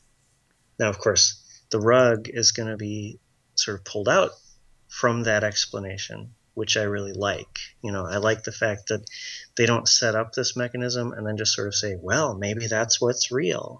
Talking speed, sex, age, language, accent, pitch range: 190 wpm, male, 30-49, English, American, 105-125 Hz